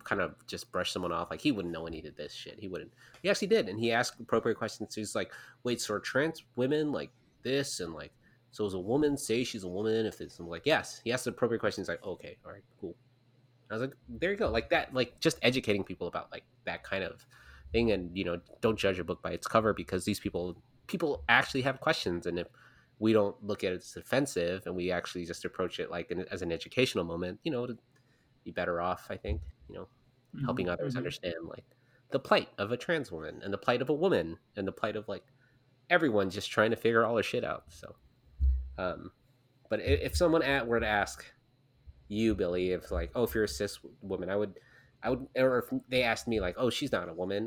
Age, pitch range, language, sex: 30-49, 90-125 Hz, English, male